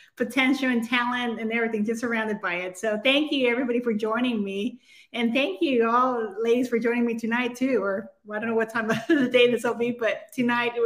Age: 30-49